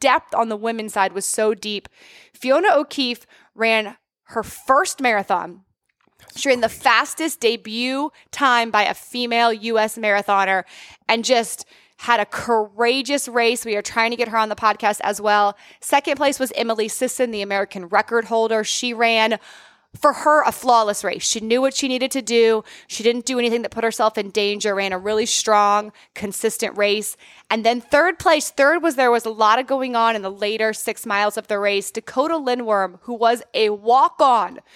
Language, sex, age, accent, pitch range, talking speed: English, female, 20-39, American, 210-260 Hz, 185 wpm